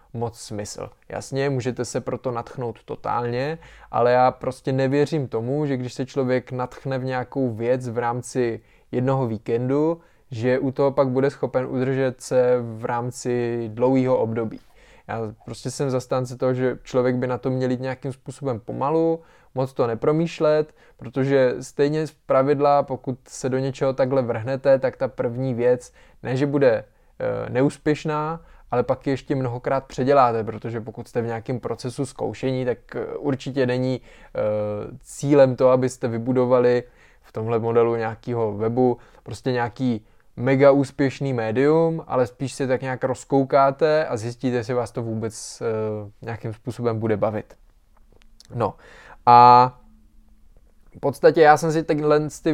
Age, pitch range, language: 20-39, 120-140 Hz, Czech